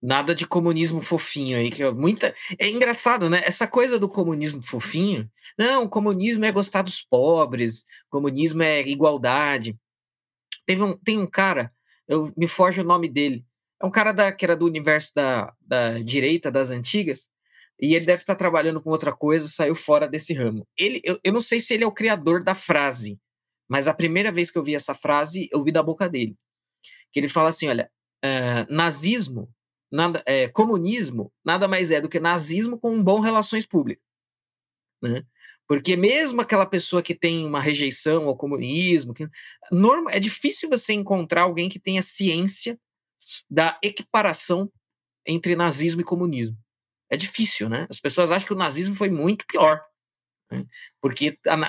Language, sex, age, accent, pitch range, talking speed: Portuguese, male, 20-39, Brazilian, 140-195 Hz, 175 wpm